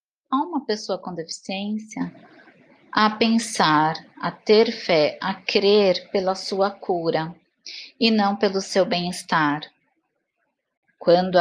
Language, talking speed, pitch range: Portuguese, 110 wpm, 175-235 Hz